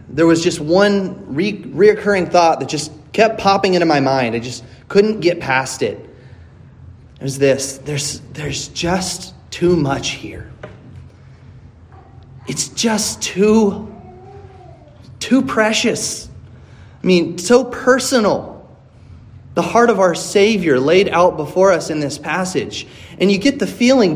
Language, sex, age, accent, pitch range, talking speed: English, male, 30-49, American, 125-195 Hz, 135 wpm